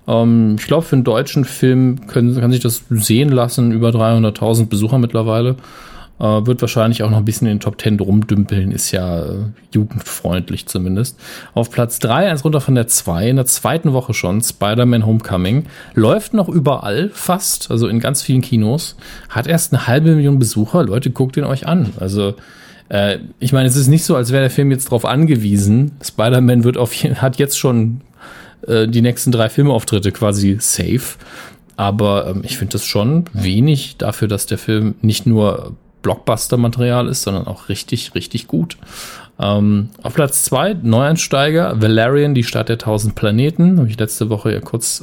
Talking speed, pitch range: 175 wpm, 105-130 Hz